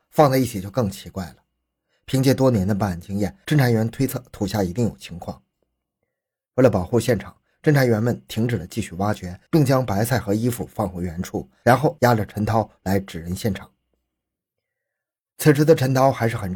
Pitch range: 95-130 Hz